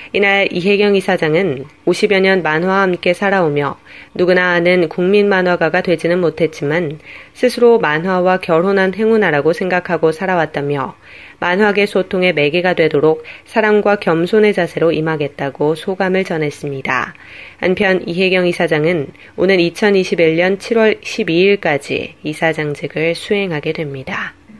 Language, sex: Korean, female